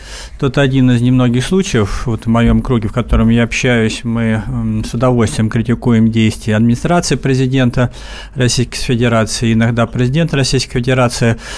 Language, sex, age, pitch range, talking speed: Russian, male, 40-59, 115-145 Hz, 135 wpm